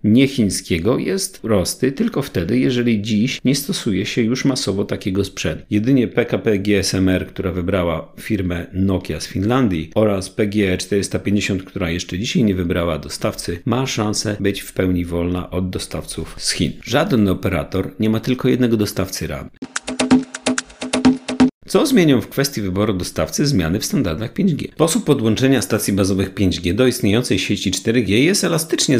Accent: native